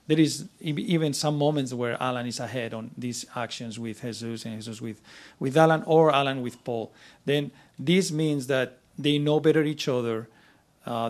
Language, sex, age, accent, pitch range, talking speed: English, male, 40-59, Spanish, 125-150 Hz, 180 wpm